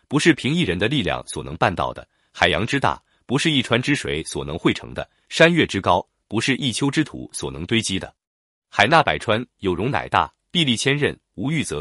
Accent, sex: native, male